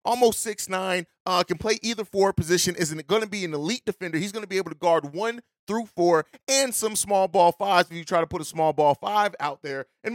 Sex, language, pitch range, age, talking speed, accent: male, English, 175-225 Hz, 30-49, 250 wpm, American